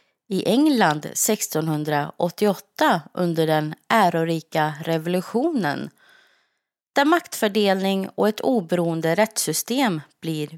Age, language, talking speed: 30-49, Swedish, 80 wpm